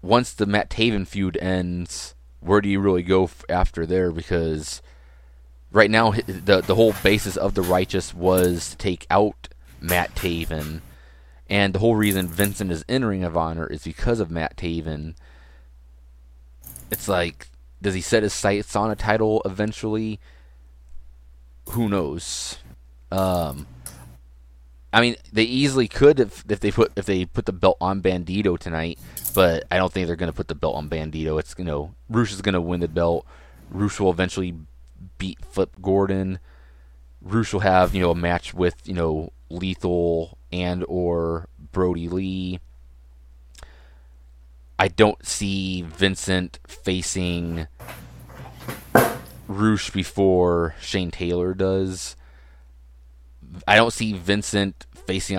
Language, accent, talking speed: English, American, 145 wpm